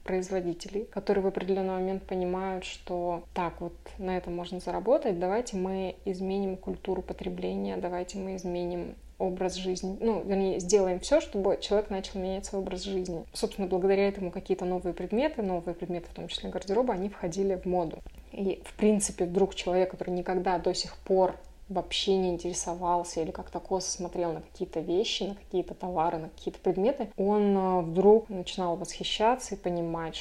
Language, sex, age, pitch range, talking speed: Russian, female, 20-39, 180-200 Hz, 165 wpm